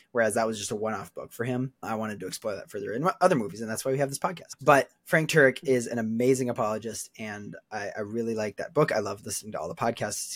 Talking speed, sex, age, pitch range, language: 265 wpm, male, 20-39, 110-135 Hz, English